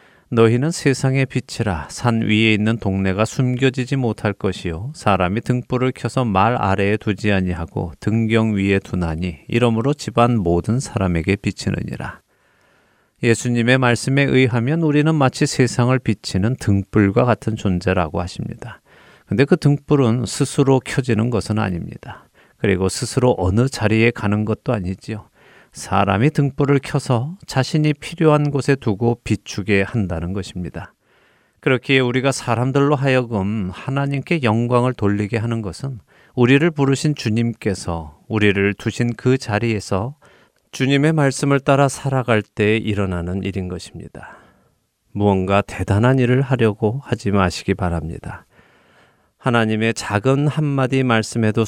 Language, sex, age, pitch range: Korean, male, 40-59, 100-130 Hz